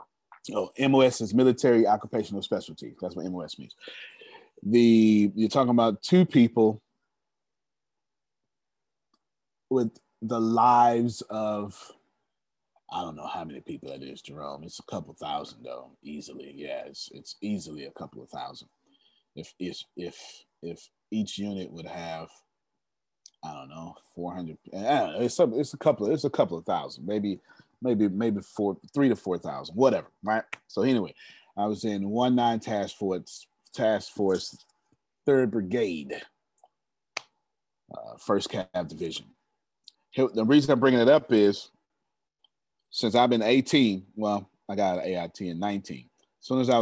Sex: male